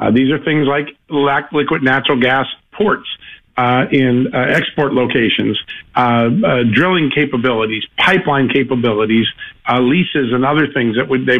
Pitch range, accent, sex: 125-155 Hz, American, male